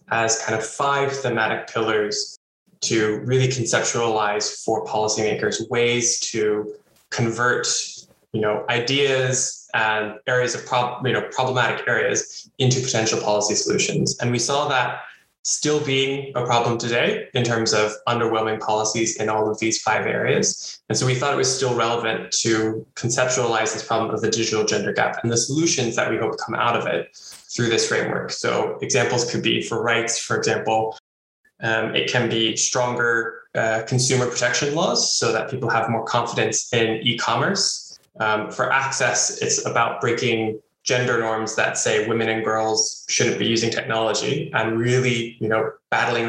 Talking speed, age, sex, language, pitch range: 165 wpm, 20-39, male, English, 110-130 Hz